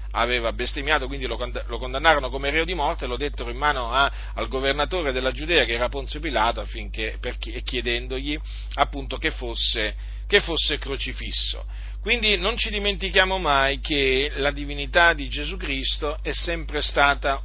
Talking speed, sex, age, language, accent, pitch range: 160 wpm, male, 40-59, Italian, native, 110-145 Hz